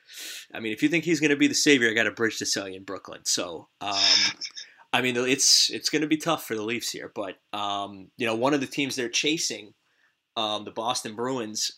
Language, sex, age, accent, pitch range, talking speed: English, male, 20-39, American, 110-150 Hz, 245 wpm